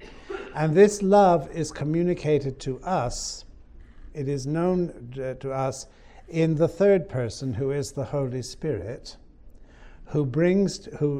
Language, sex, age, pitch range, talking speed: English, male, 60-79, 125-145 Hz, 130 wpm